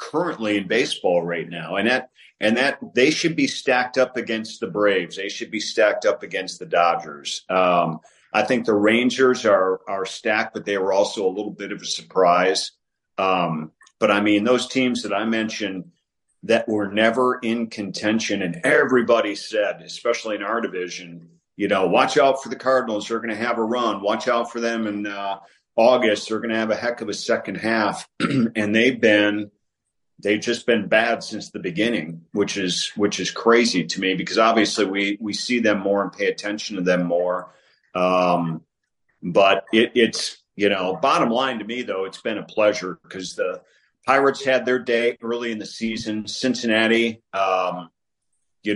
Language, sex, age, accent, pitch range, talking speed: English, male, 40-59, American, 95-115 Hz, 185 wpm